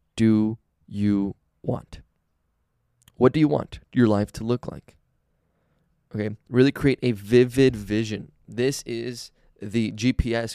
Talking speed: 125 wpm